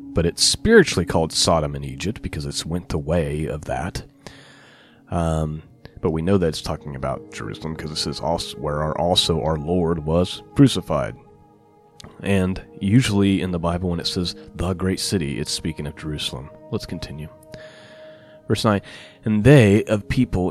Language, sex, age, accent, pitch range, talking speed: English, male, 30-49, American, 80-105 Hz, 165 wpm